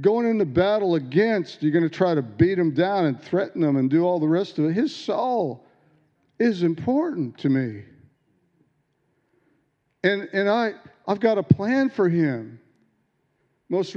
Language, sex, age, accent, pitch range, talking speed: English, male, 50-69, American, 140-185 Hz, 160 wpm